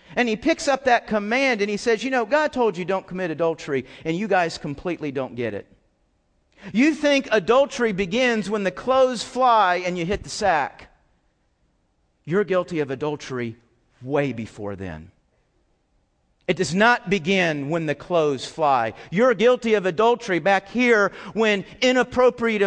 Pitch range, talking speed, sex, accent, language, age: 145-235 Hz, 160 wpm, male, American, English, 40-59